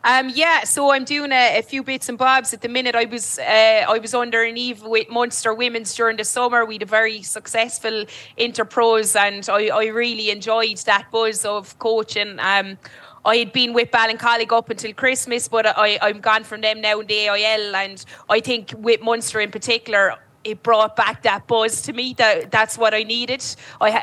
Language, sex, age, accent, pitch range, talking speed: English, female, 20-39, Irish, 215-235 Hz, 205 wpm